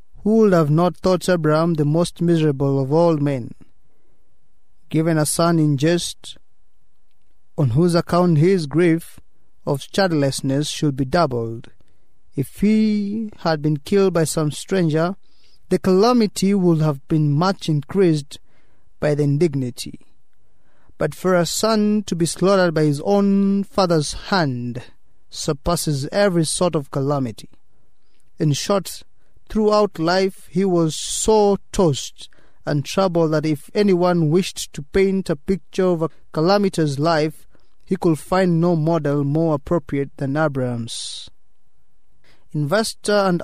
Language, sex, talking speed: English, male, 130 wpm